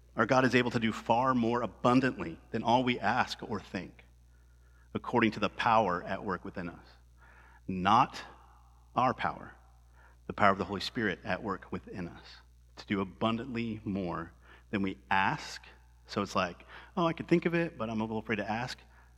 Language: English